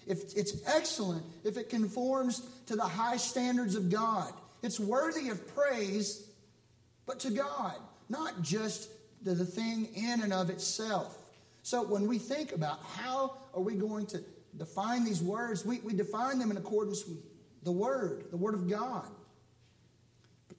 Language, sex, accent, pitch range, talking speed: English, male, American, 150-210 Hz, 155 wpm